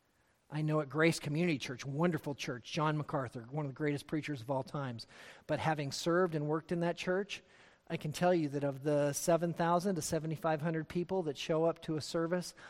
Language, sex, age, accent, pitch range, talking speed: English, male, 40-59, American, 145-175 Hz, 205 wpm